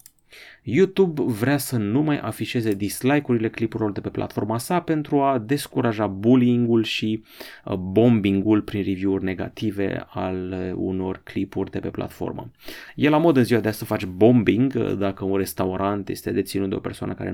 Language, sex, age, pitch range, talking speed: Romanian, male, 30-49, 100-125 Hz, 160 wpm